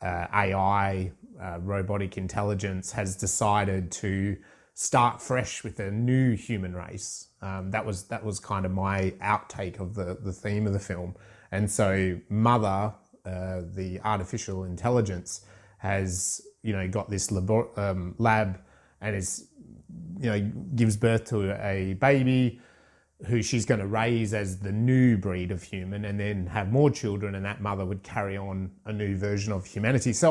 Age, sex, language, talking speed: 30-49, male, English, 165 wpm